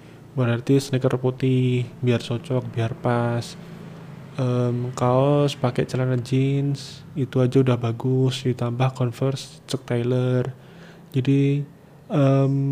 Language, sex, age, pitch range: Indonesian, male, 20-39, 125-140 Hz